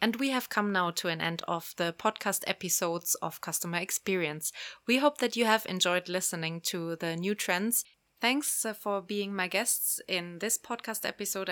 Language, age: German, 20-39